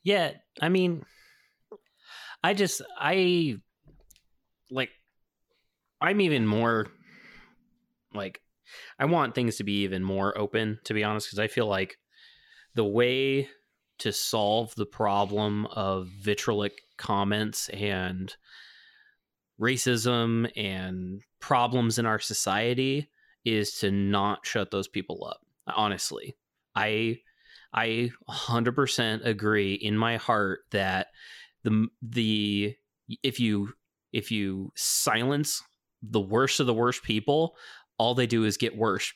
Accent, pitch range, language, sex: American, 105-120 Hz, English, male